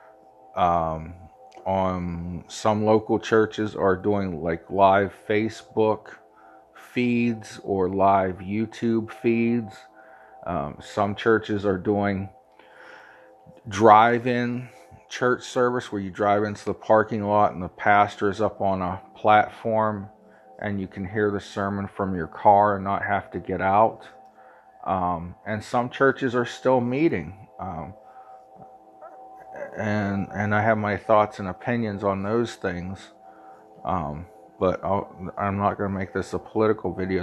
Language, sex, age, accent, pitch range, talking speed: English, male, 40-59, American, 95-115 Hz, 135 wpm